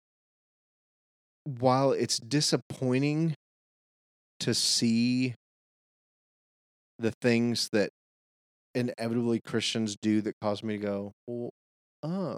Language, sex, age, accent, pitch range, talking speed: English, male, 30-49, American, 100-125 Hz, 80 wpm